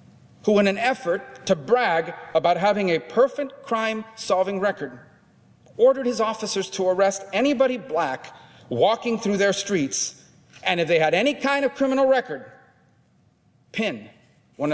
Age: 40-59